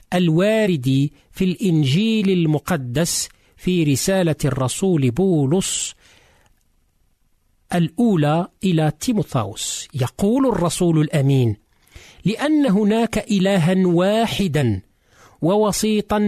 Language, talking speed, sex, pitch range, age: Arabic, 70 wpm, male, 150-205 Hz, 50-69